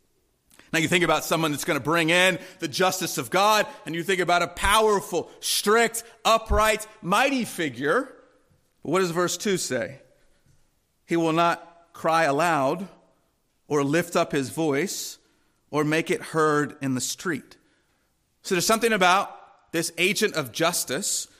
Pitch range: 155-210 Hz